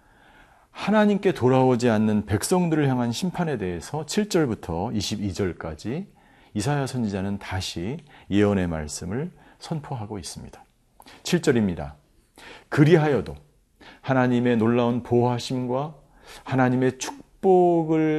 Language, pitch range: Korean, 100-140 Hz